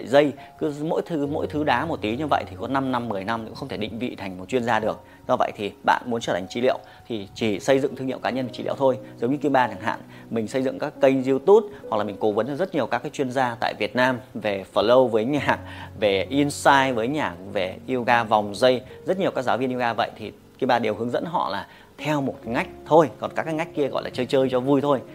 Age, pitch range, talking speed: 30-49, 110-135 Hz, 270 wpm